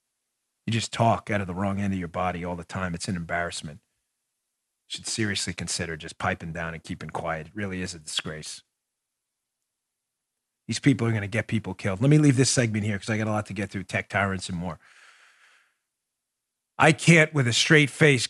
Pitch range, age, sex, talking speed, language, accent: 120-185 Hz, 40-59, male, 210 wpm, English, American